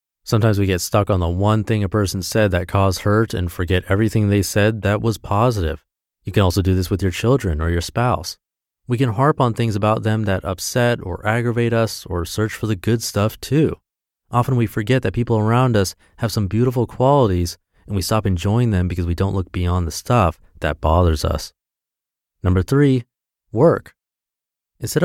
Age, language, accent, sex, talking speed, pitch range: 30-49, English, American, male, 195 wpm, 90-115 Hz